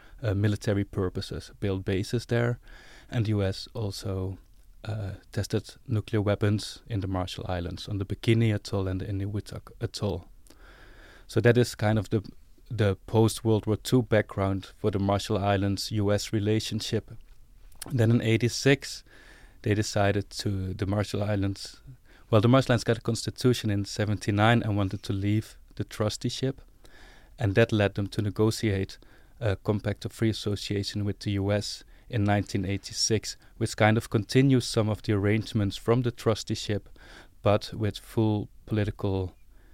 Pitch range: 100-110 Hz